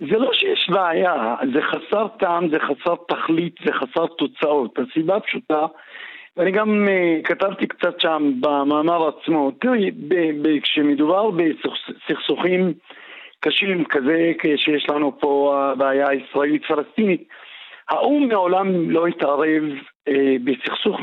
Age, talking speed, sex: 50-69, 110 wpm, male